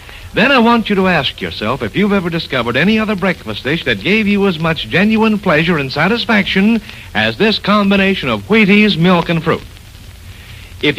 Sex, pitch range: male, 135-215 Hz